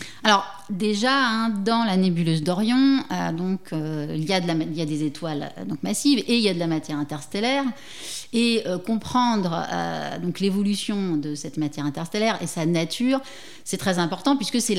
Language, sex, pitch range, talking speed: French, female, 170-230 Hz, 195 wpm